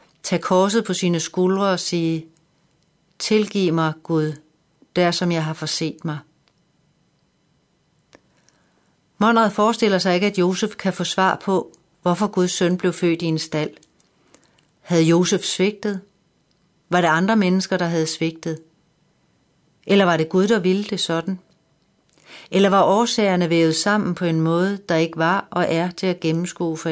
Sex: female